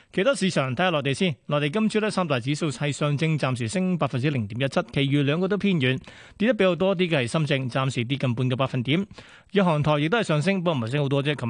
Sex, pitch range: male, 135-180 Hz